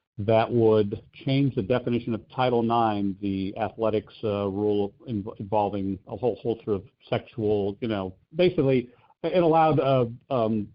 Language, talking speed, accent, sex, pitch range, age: English, 150 wpm, American, male, 110-135 Hz, 50-69